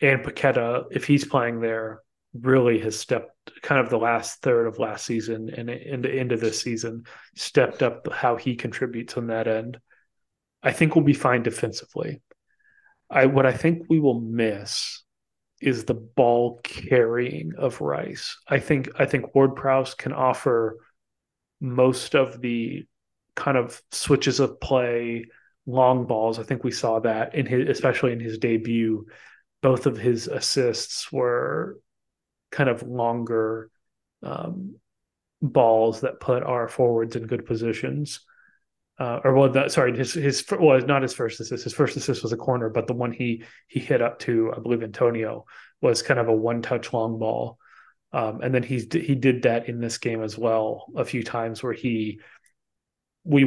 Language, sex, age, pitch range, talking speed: English, male, 30-49, 115-130 Hz, 170 wpm